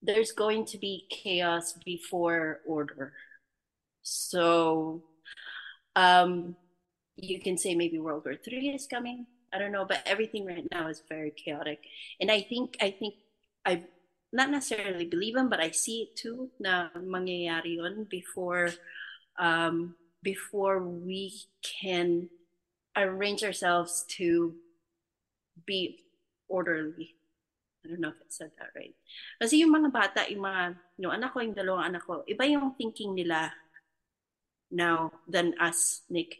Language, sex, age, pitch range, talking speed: English, female, 30-49, 170-210 Hz, 135 wpm